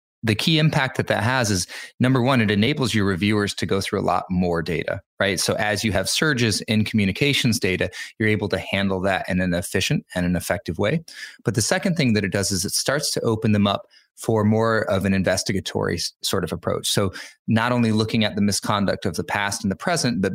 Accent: American